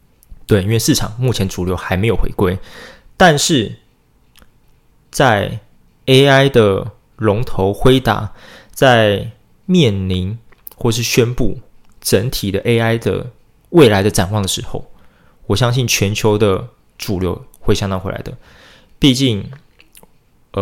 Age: 20-39